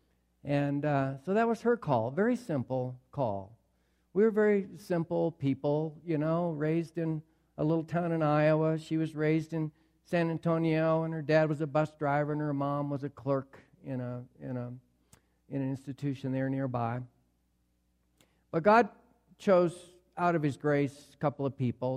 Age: 60-79